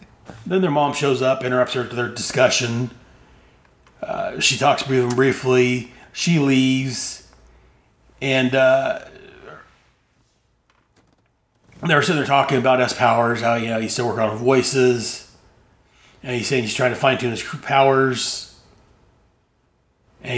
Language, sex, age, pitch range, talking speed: English, male, 30-49, 105-135 Hz, 130 wpm